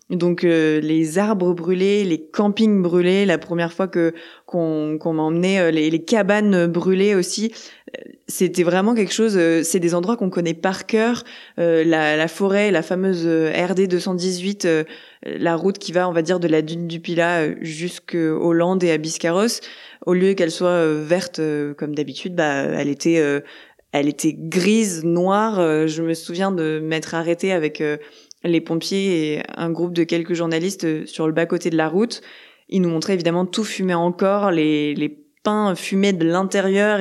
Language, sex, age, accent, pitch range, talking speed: French, female, 20-39, French, 165-195 Hz, 185 wpm